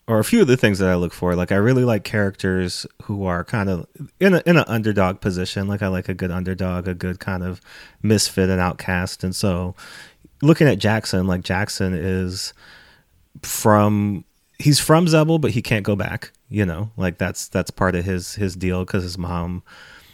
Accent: American